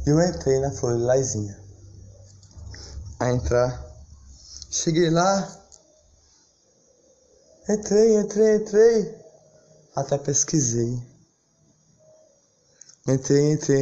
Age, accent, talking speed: 20-39, Brazilian, 80 wpm